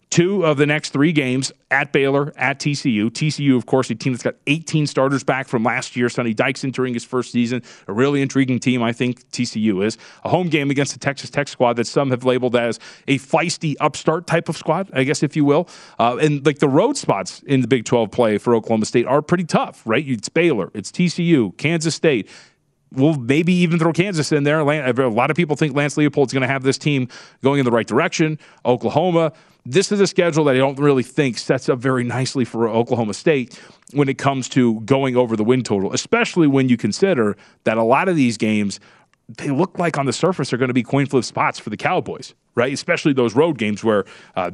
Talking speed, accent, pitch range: 230 wpm, American, 120-155 Hz